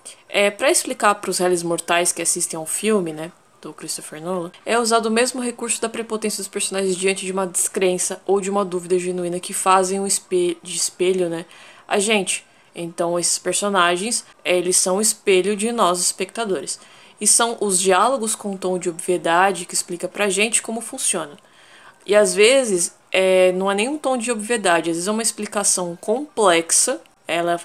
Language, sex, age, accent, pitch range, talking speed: Portuguese, female, 20-39, Brazilian, 180-215 Hz, 185 wpm